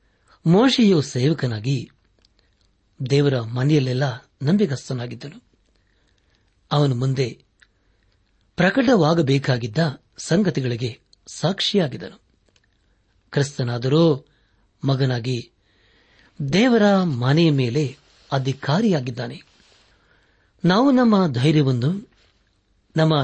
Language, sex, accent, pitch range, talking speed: Kannada, male, native, 110-150 Hz, 50 wpm